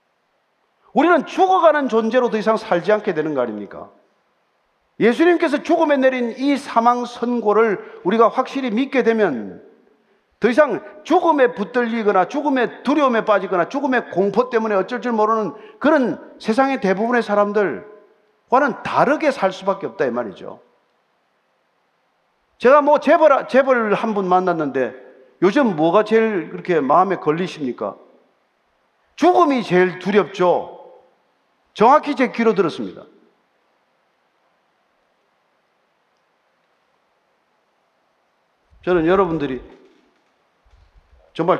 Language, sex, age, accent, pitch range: Korean, male, 50-69, native, 185-275 Hz